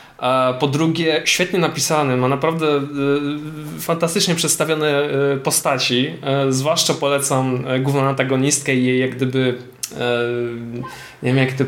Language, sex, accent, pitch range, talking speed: Polish, male, native, 135-175 Hz, 115 wpm